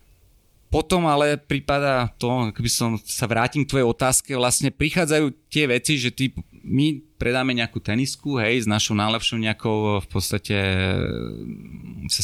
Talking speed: 145 wpm